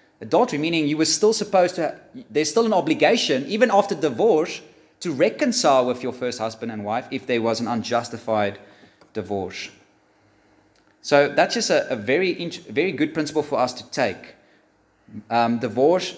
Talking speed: 160 wpm